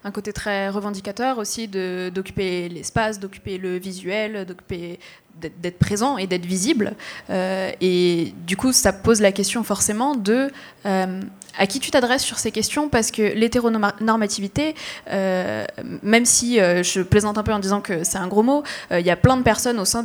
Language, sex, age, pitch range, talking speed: French, female, 20-39, 190-230 Hz, 190 wpm